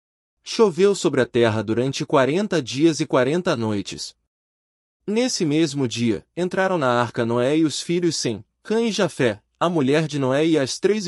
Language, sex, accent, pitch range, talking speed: Portuguese, male, Brazilian, 115-175 Hz, 170 wpm